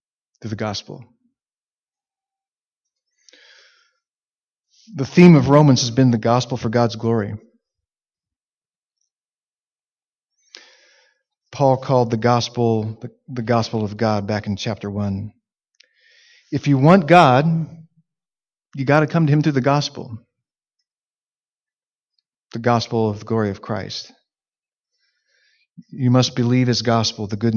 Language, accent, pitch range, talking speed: English, American, 115-160 Hz, 120 wpm